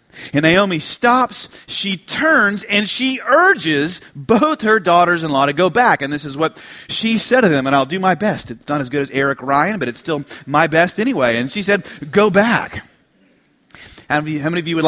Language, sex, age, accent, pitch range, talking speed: English, male, 30-49, American, 150-225 Hz, 200 wpm